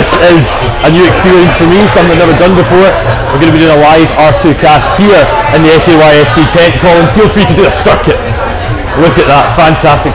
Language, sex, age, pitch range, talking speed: English, male, 20-39, 150-180 Hz, 220 wpm